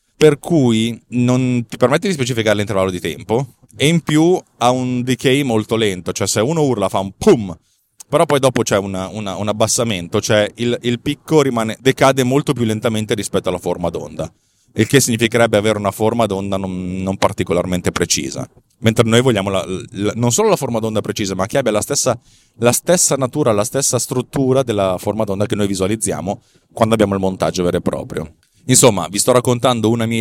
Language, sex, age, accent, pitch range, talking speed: Italian, male, 30-49, native, 100-125 Hz, 185 wpm